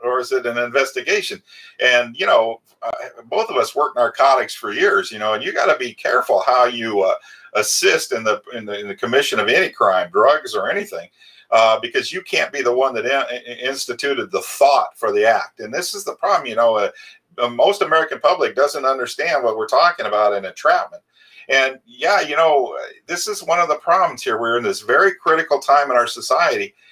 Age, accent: 50-69, American